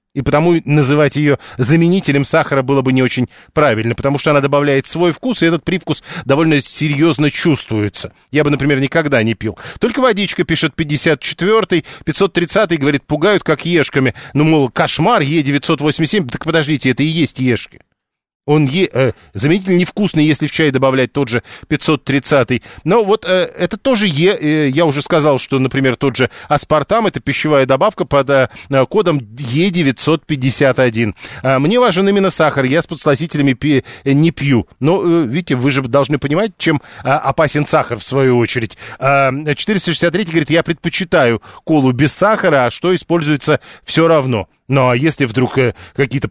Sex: male